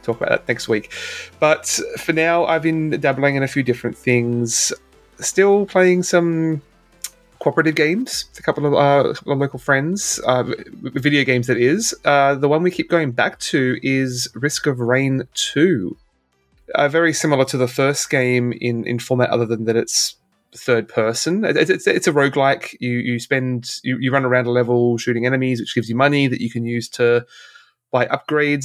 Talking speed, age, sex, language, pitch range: 195 wpm, 30-49, male, English, 120-140 Hz